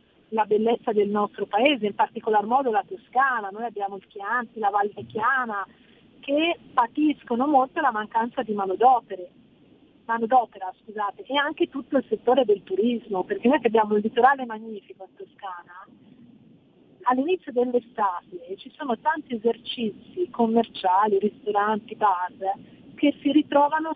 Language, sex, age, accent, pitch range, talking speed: Italian, female, 40-59, native, 215-275 Hz, 130 wpm